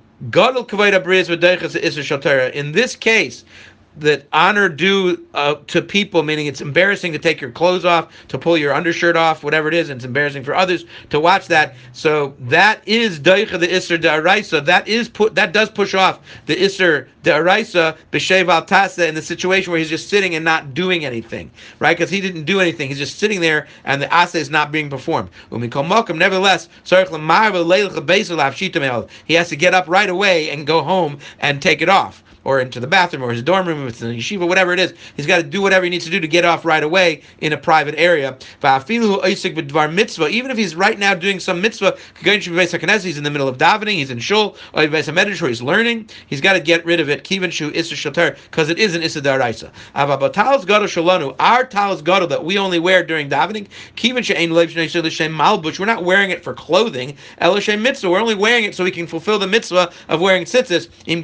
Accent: American